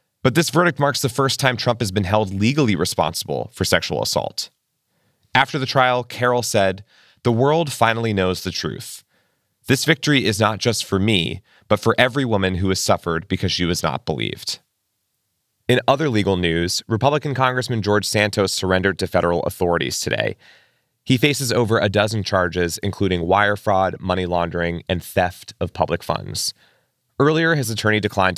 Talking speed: 165 wpm